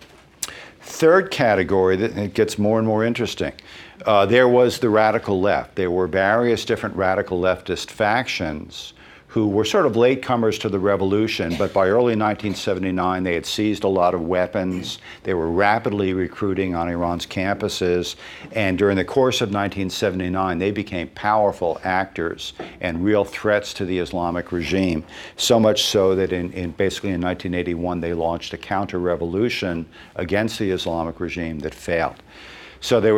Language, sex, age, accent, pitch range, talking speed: English, male, 50-69, American, 85-105 Hz, 155 wpm